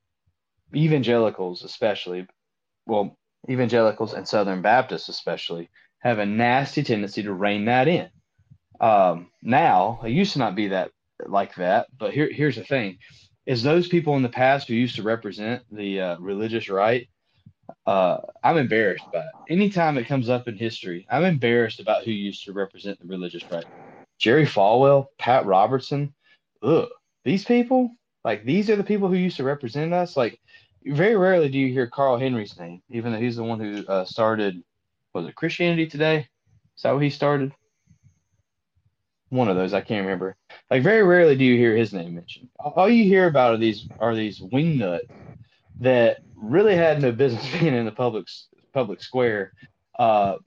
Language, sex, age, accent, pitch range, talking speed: English, male, 30-49, American, 100-140 Hz, 175 wpm